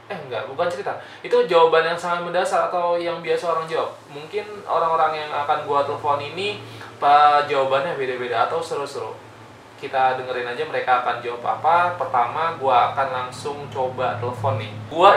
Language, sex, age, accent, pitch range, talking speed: Indonesian, male, 20-39, native, 130-170 Hz, 160 wpm